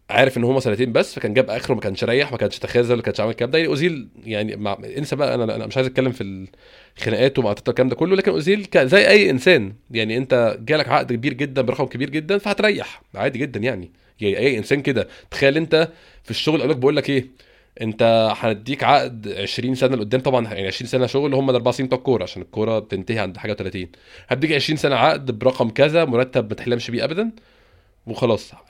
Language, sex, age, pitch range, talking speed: Arabic, male, 20-39, 110-140 Hz, 200 wpm